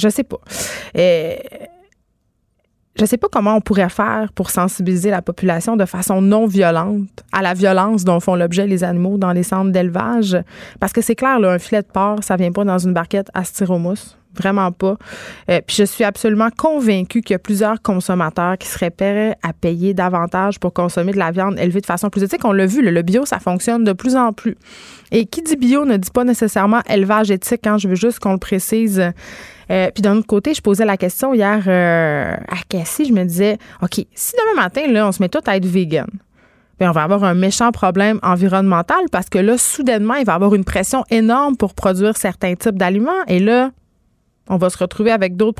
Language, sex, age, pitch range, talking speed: French, female, 20-39, 185-225 Hz, 220 wpm